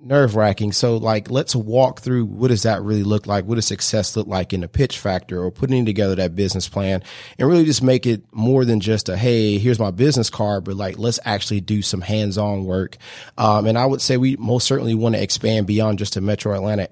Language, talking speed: English, 235 wpm